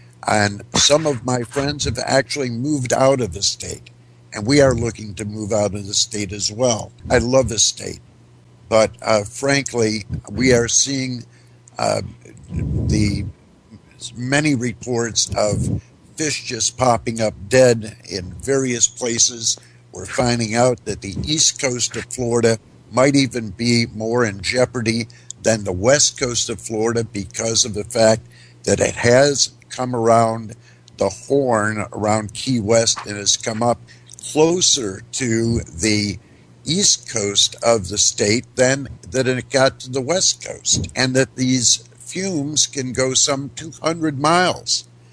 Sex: male